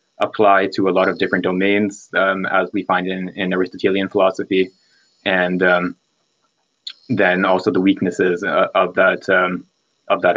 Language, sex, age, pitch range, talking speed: English, male, 20-39, 95-105 Hz, 155 wpm